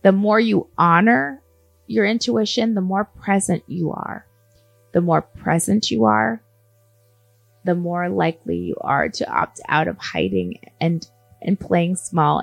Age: 20-39